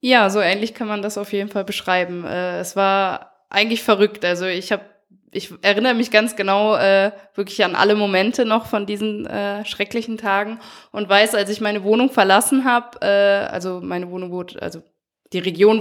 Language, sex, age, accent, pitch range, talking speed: German, female, 20-39, German, 185-225 Hz, 190 wpm